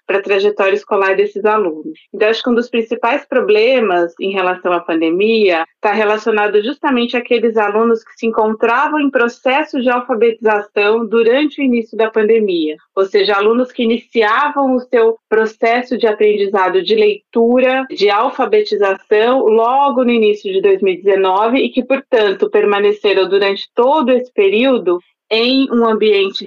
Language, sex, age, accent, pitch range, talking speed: Portuguese, female, 30-49, Brazilian, 195-245 Hz, 145 wpm